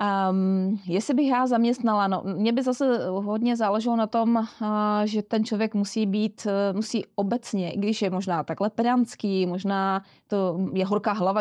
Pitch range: 190-210 Hz